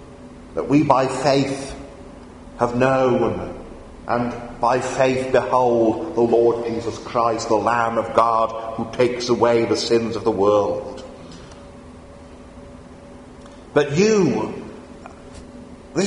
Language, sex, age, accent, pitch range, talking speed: English, male, 40-59, British, 120-150 Hz, 110 wpm